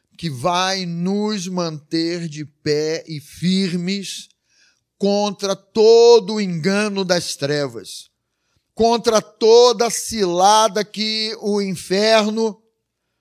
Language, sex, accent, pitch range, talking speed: Portuguese, male, Brazilian, 175-235 Hz, 95 wpm